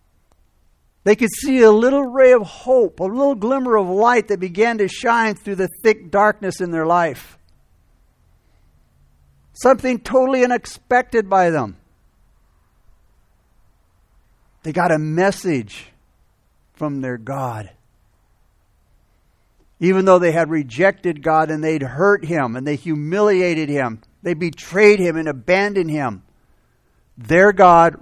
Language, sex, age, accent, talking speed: English, male, 60-79, American, 125 wpm